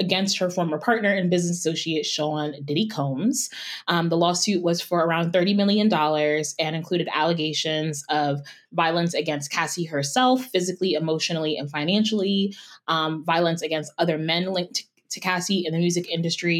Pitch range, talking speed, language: 155-190 Hz, 155 wpm, English